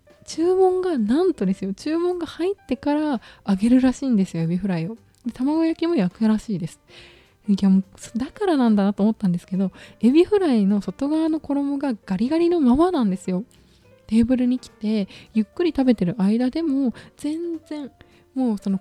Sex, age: female, 20-39